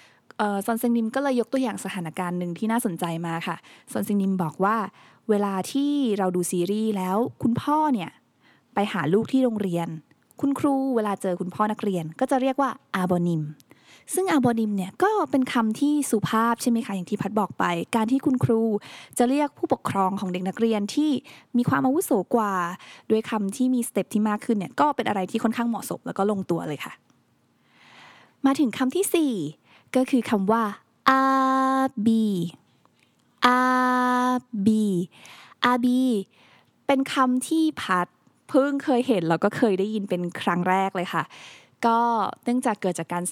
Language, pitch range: Thai, 190-260 Hz